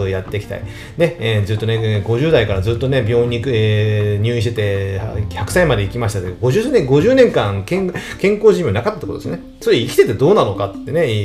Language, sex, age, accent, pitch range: Japanese, male, 30-49, native, 105-155 Hz